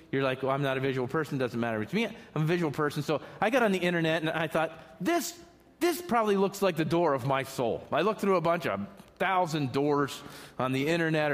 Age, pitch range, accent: 40-59, 145-190 Hz, American